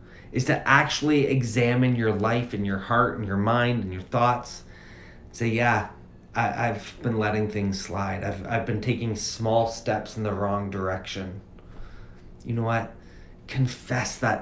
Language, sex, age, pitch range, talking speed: English, male, 30-49, 105-135 Hz, 160 wpm